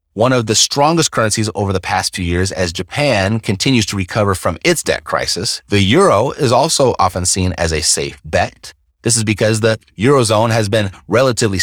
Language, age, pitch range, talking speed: English, 30-49, 90-135 Hz, 190 wpm